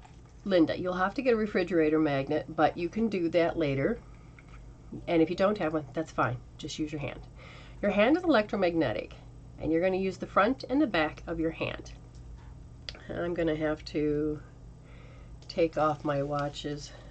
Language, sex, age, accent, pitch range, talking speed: English, female, 40-59, American, 130-175 Hz, 175 wpm